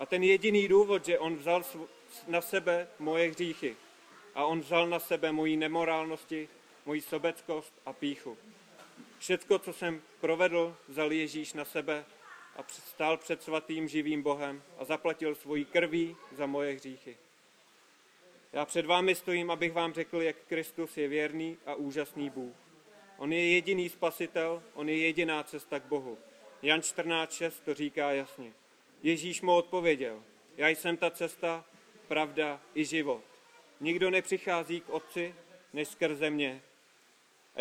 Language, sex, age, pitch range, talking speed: Czech, male, 30-49, 150-175 Hz, 145 wpm